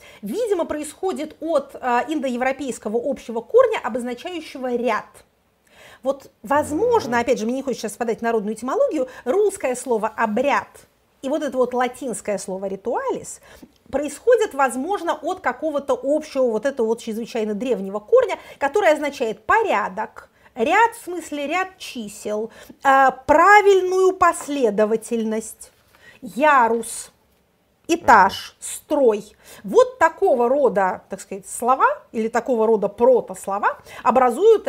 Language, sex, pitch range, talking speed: Russian, female, 230-340 Hz, 115 wpm